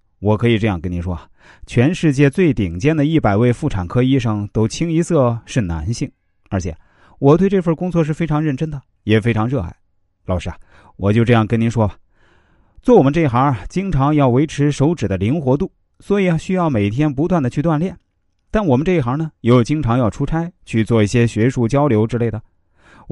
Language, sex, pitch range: Chinese, male, 105-150 Hz